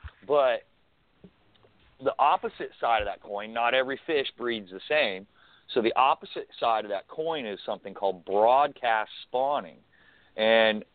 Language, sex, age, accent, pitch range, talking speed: English, male, 40-59, American, 110-145 Hz, 140 wpm